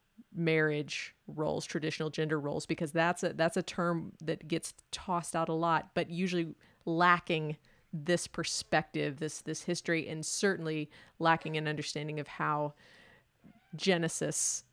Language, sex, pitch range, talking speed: English, female, 155-175 Hz, 135 wpm